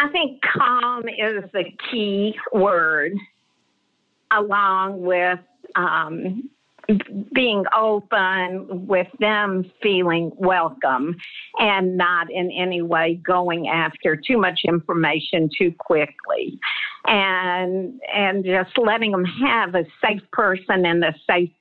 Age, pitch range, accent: 50-69, 170-215 Hz, American